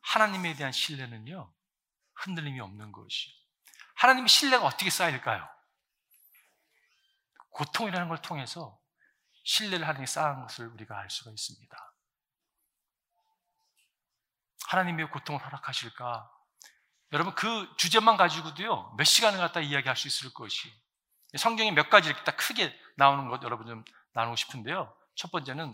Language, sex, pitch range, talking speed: English, male, 130-190 Hz, 115 wpm